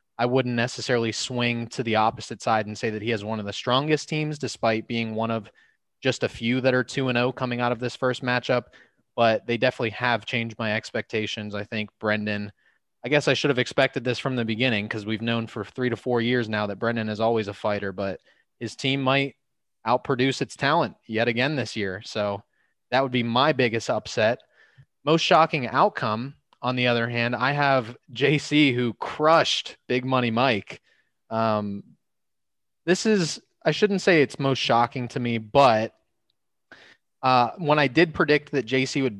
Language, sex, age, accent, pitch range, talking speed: English, male, 20-39, American, 115-135 Hz, 190 wpm